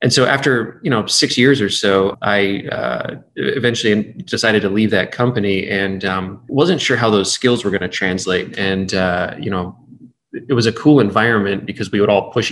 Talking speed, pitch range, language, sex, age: 200 wpm, 95-110 Hz, English, male, 20-39